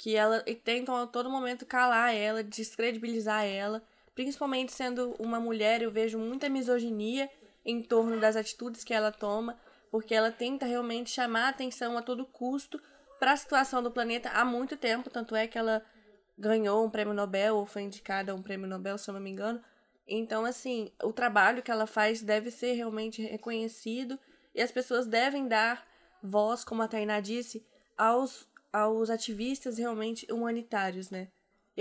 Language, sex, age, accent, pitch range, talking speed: Portuguese, female, 20-39, Brazilian, 215-245 Hz, 175 wpm